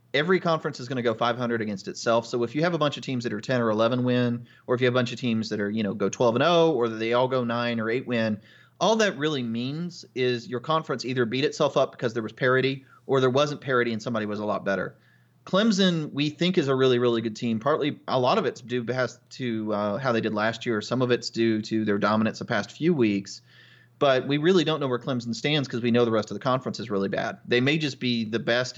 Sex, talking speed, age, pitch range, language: male, 270 wpm, 30-49, 115-135 Hz, English